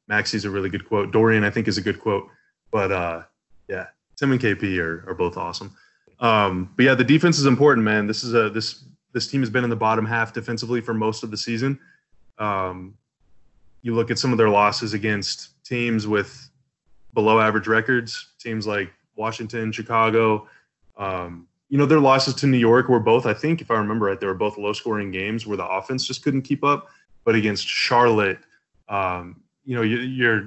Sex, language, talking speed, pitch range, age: male, English, 200 wpm, 100-120 Hz, 20-39